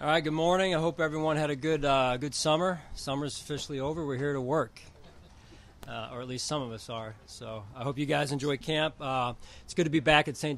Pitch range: 115-135 Hz